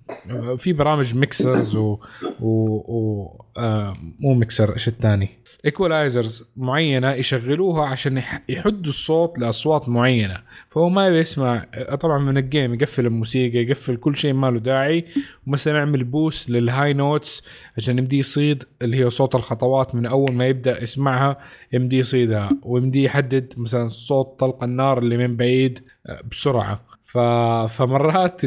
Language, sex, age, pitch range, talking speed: Arabic, male, 20-39, 115-140 Hz, 135 wpm